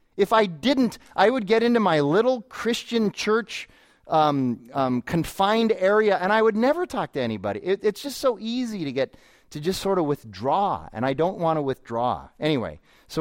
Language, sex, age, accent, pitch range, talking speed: English, male, 30-49, American, 140-190 Hz, 190 wpm